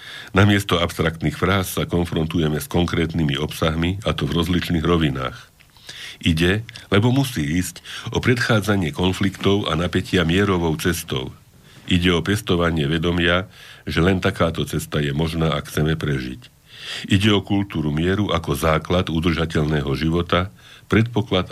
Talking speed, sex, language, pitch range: 130 wpm, male, Slovak, 80-95 Hz